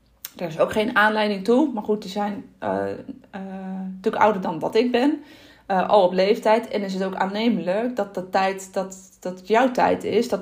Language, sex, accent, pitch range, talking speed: Dutch, female, Dutch, 190-230 Hz, 200 wpm